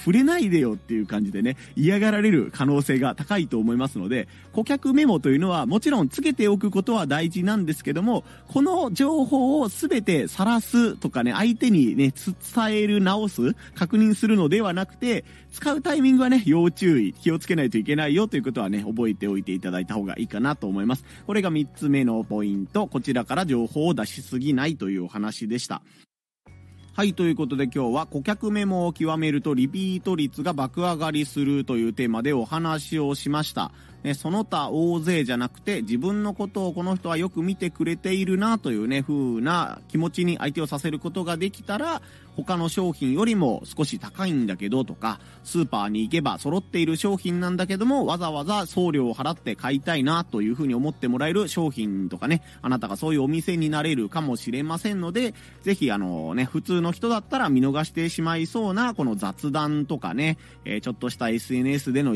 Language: Japanese